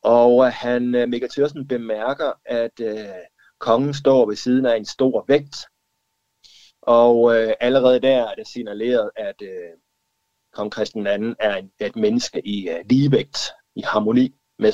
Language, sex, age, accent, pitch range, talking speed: Danish, male, 30-49, native, 115-145 Hz, 145 wpm